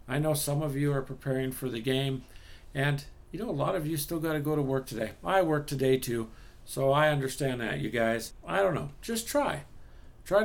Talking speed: 230 wpm